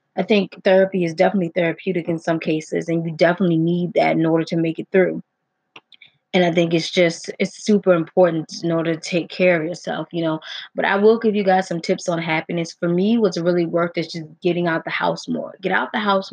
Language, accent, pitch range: English, American, 170-205 Hz